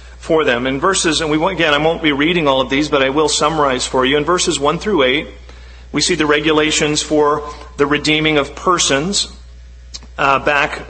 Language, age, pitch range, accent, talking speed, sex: English, 50-69, 130-160 Hz, American, 200 wpm, male